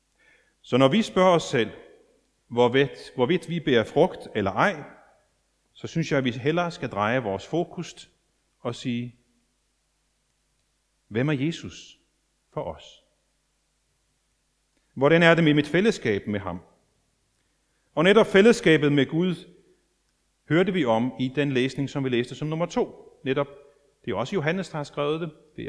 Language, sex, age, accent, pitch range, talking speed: Danish, male, 40-59, native, 125-180 Hz, 150 wpm